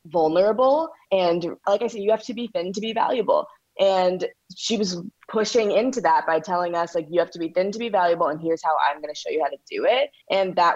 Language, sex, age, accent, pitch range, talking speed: English, female, 20-39, American, 165-215 Hz, 250 wpm